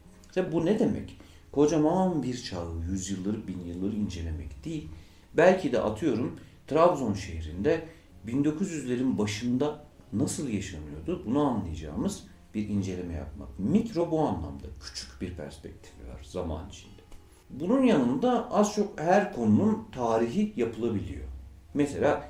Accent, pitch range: native, 80-125 Hz